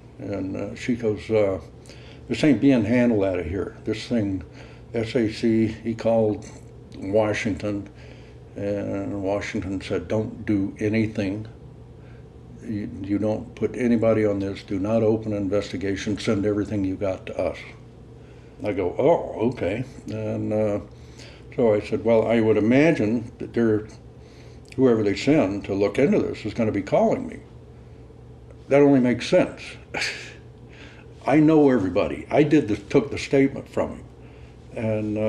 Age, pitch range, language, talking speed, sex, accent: 60-79, 105-130 Hz, English, 145 wpm, male, American